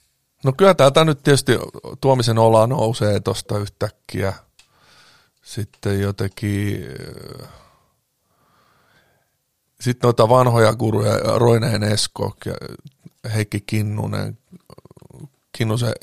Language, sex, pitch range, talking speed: Finnish, male, 105-130 Hz, 80 wpm